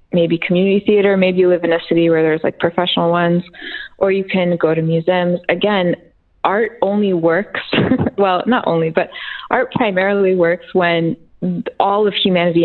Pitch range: 170-200 Hz